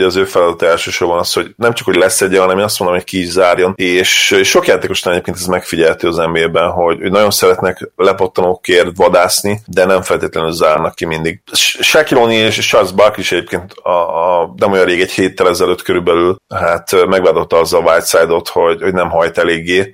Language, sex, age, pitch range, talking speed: Hungarian, male, 30-49, 90-110 Hz, 185 wpm